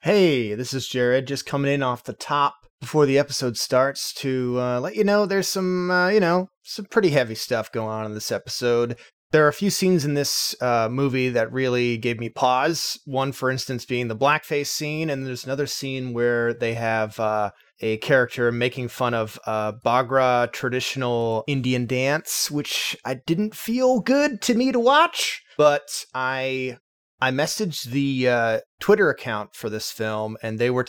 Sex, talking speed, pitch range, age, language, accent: male, 185 wpm, 115-145 Hz, 30-49, English, American